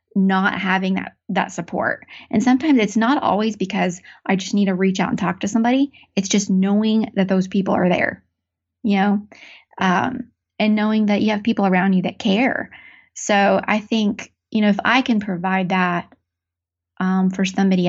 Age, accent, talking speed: 20-39, American, 185 wpm